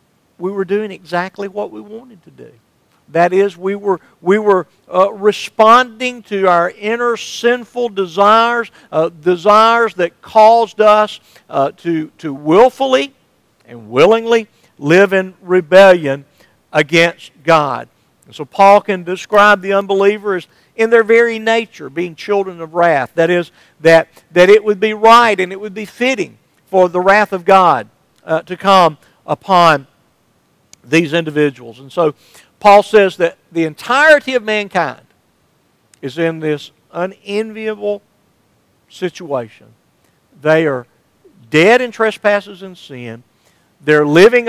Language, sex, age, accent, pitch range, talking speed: English, male, 50-69, American, 160-215 Hz, 135 wpm